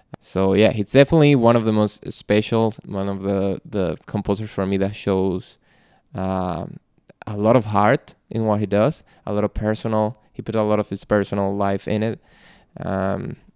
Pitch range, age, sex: 100-115 Hz, 20-39, male